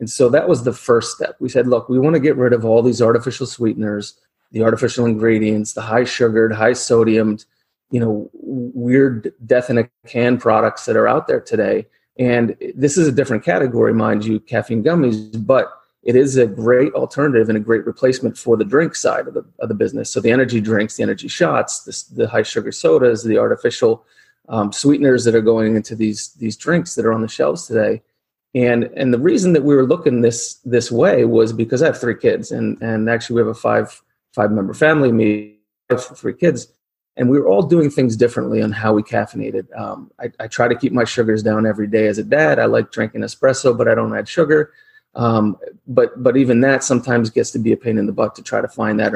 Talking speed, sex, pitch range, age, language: 220 wpm, male, 110-135 Hz, 30-49, English